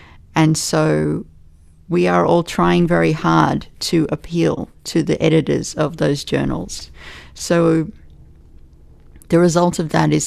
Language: English